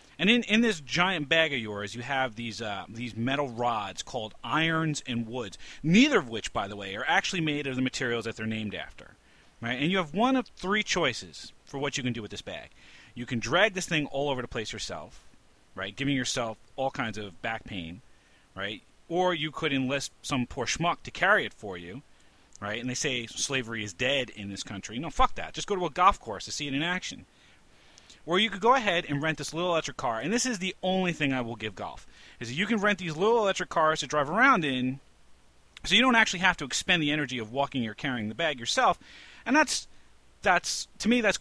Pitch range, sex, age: 120-180 Hz, male, 40-59